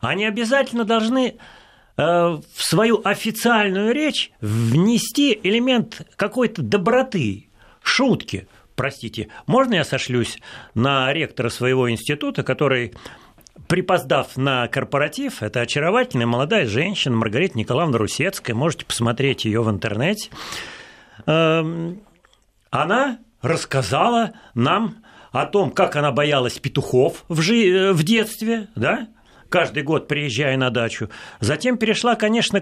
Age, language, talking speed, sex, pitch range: 40-59, Russian, 105 wpm, male, 130-210 Hz